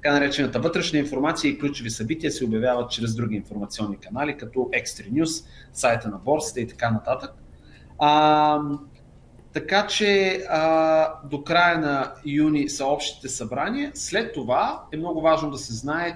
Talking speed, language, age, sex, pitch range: 150 wpm, Bulgarian, 30-49, male, 125-175 Hz